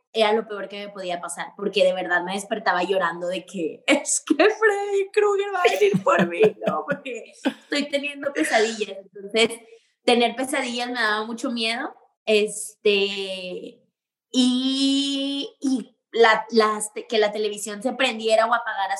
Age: 20-39